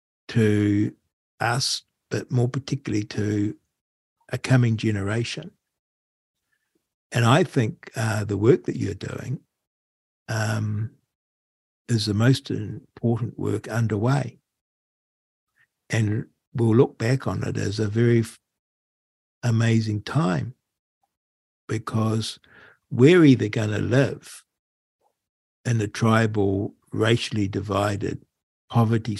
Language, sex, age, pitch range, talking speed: English, male, 60-79, 100-125 Hz, 100 wpm